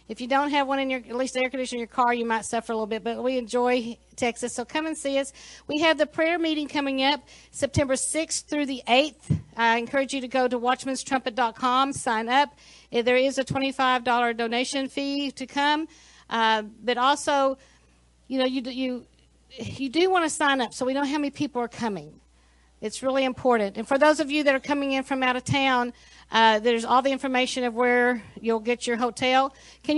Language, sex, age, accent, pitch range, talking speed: English, female, 50-69, American, 230-275 Hz, 215 wpm